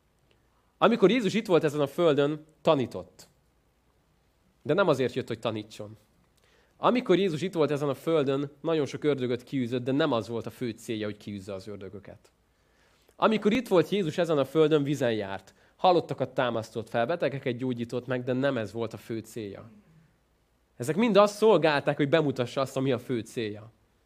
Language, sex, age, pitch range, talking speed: Hungarian, male, 30-49, 115-160 Hz, 170 wpm